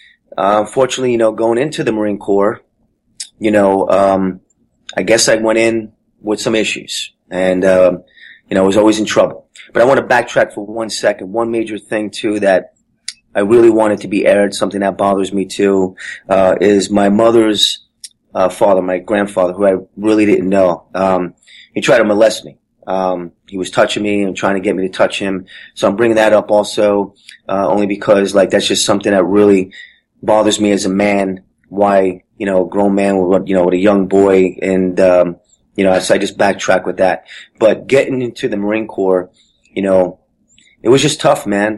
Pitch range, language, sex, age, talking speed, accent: 95-105 Hz, English, male, 30-49, 205 wpm, American